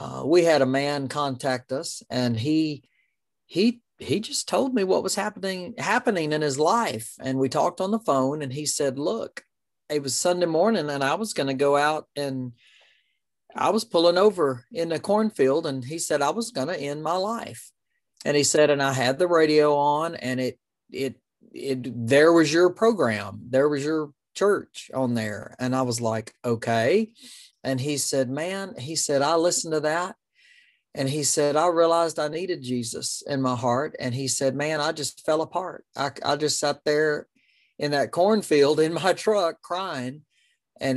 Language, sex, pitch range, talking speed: English, male, 135-180 Hz, 190 wpm